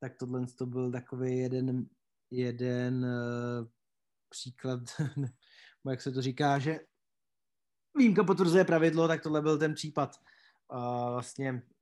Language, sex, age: Czech, male, 20-39